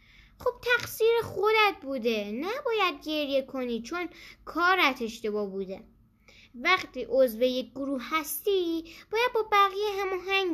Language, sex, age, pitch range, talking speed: Persian, female, 10-29, 235-345 Hz, 115 wpm